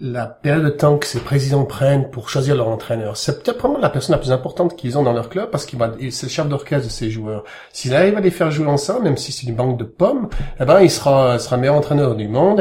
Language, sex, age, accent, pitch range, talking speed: French, male, 40-59, French, 115-150 Hz, 275 wpm